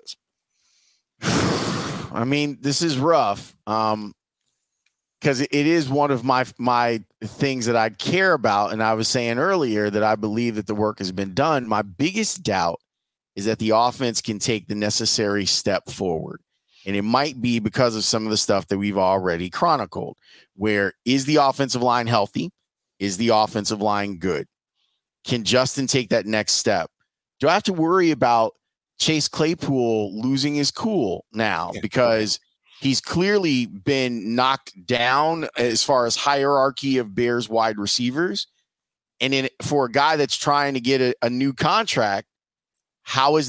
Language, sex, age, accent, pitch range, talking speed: English, male, 30-49, American, 110-140 Hz, 160 wpm